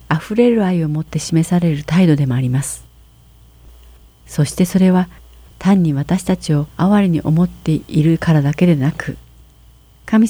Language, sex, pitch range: Japanese, female, 120-175 Hz